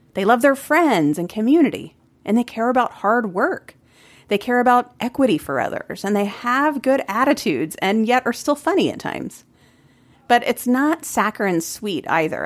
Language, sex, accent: English, female, American